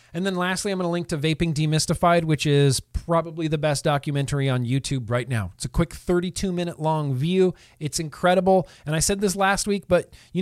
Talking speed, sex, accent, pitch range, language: 215 wpm, male, American, 130-170 Hz, English